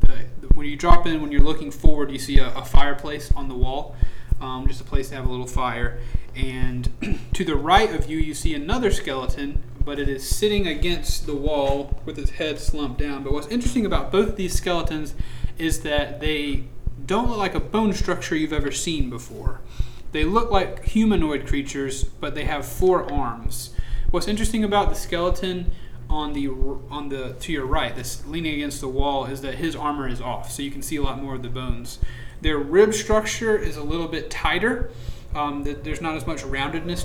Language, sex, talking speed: English, male, 200 wpm